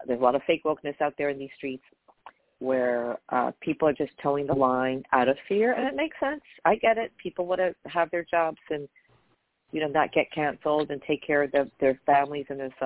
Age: 50-69